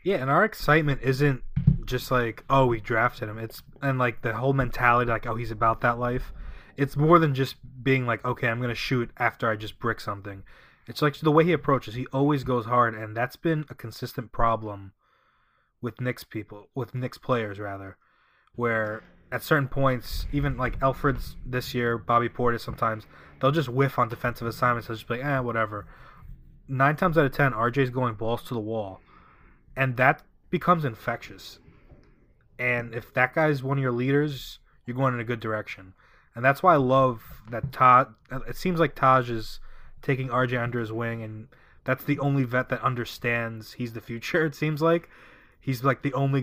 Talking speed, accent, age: 195 wpm, American, 20-39